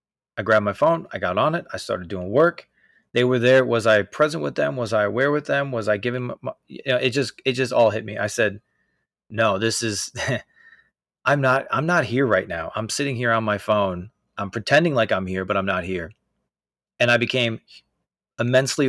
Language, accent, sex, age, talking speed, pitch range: English, American, male, 30-49, 220 wpm, 110-130 Hz